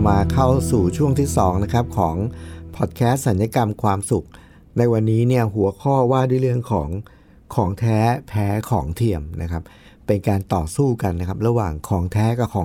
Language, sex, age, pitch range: Thai, male, 60-79, 95-130 Hz